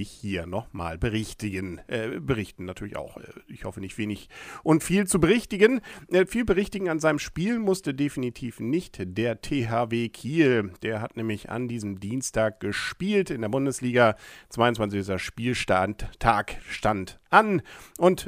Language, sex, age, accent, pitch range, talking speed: German, male, 50-69, German, 100-145 Hz, 135 wpm